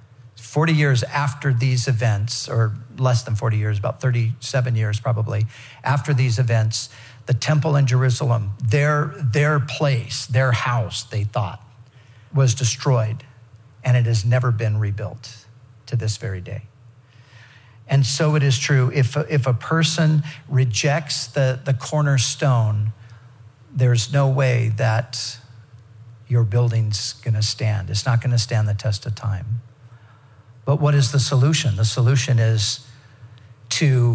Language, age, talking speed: English, 50-69, 140 wpm